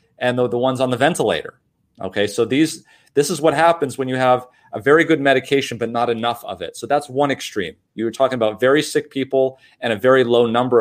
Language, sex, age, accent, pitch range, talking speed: English, male, 30-49, American, 120-145 Hz, 235 wpm